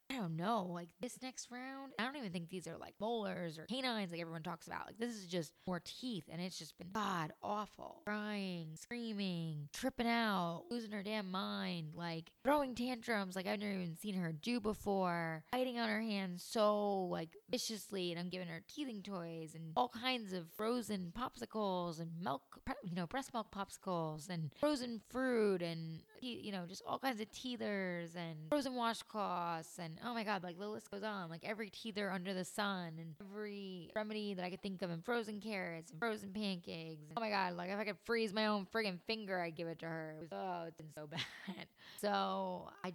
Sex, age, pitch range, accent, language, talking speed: female, 20-39, 170-215 Hz, American, English, 210 wpm